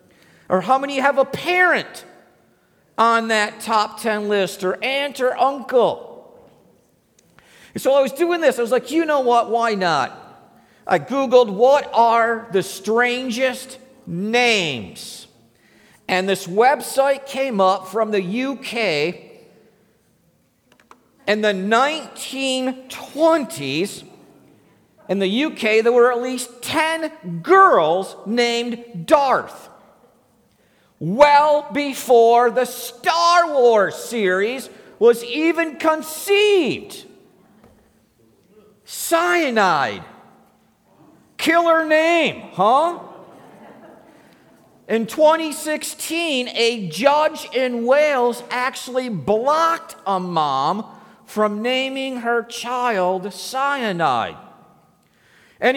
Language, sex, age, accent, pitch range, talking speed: English, male, 50-69, American, 225-295 Hz, 95 wpm